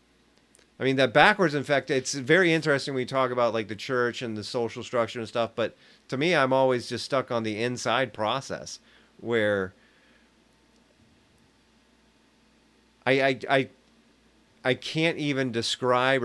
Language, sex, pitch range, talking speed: English, male, 110-130 Hz, 145 wpm